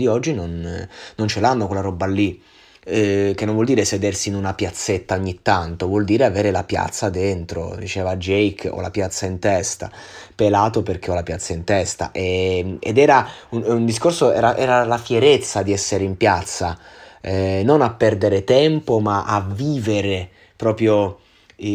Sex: male